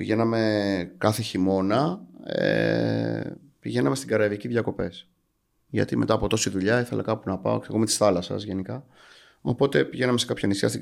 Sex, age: male, 30-49